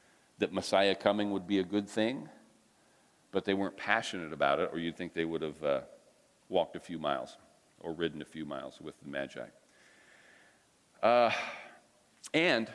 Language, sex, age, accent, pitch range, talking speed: English, male, 40-59, American, 95-115 Hz, 165 wpm